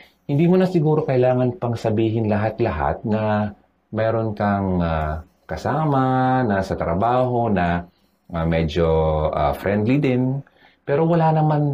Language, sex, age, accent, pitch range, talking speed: Filipino, male, 30-49, native, 95-130 Hz, 130 wpm